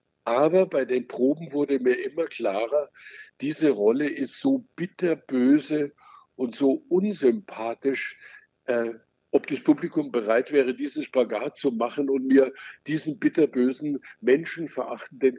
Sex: male